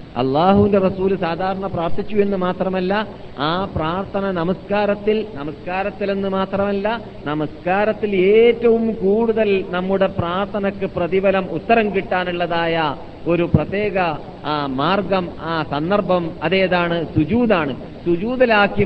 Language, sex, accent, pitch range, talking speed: Malayalam, male, native, 140-190 Hz, 90 wpm